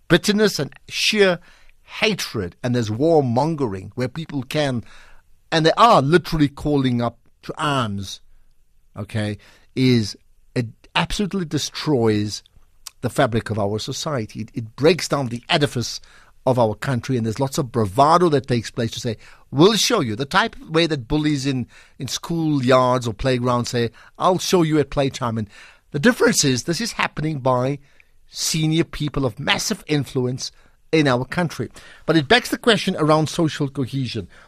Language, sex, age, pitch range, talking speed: English, male, 60-79, 120-165 Hz, 160 wpm